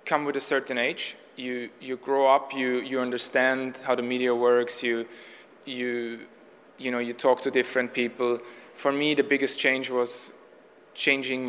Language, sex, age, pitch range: English, male, 20-39, 120-130 Hz